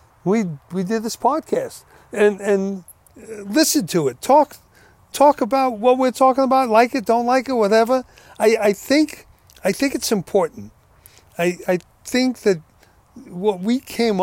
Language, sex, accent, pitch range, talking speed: English, male, American, 150-205 Hz, 155 wpm